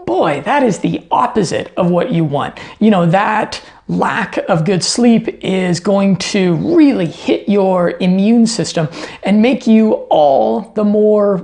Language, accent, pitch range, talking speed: English, American, 185-230 Hz, 155 wpm